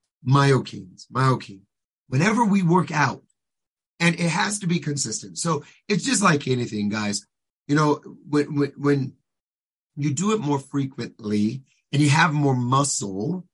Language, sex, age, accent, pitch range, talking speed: English, male, 30-49, American, 115-160 Hz, 145 wpm